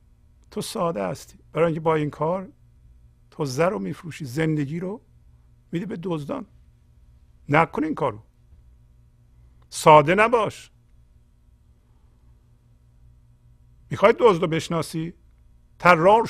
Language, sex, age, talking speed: Persian, male, 50-69, 95 wpm